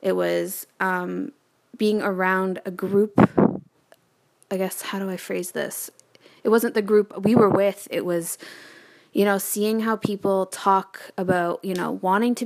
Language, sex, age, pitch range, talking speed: English, female, 20-39, 180-205 Hz, 165 wpm